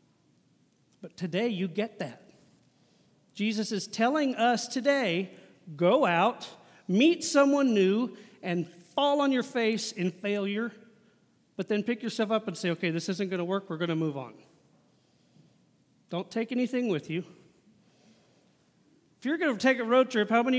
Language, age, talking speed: English, 40-59, 160 wpm